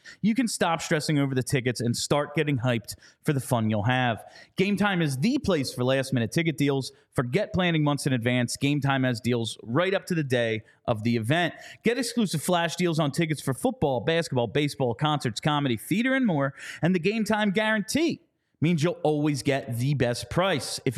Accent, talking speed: American, 205 wpm